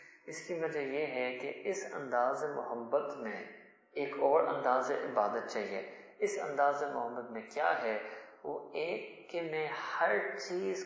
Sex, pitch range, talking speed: male, 140-200 Hz, 150 wpm